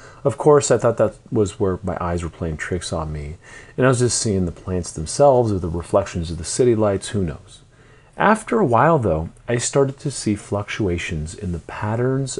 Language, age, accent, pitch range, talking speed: English, 40-59, American, 85-120 Hz, 210 wpm